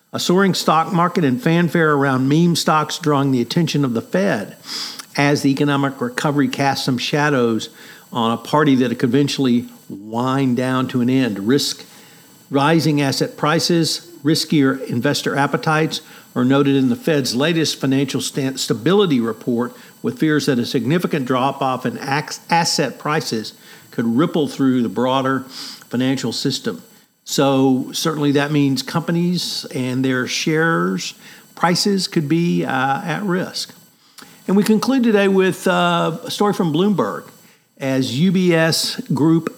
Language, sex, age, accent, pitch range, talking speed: English, male, 50-69, American, 135-170 Hz, 145 wpm